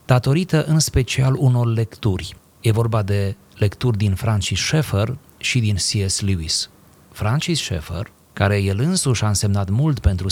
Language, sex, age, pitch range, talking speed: Romanian, male, 30-49, 100-125 Hz, 145 wpm